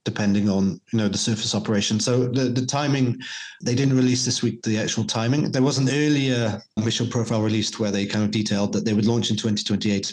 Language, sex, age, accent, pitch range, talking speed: English, male, 30-49, British, 105-120 Hz, 220 wpm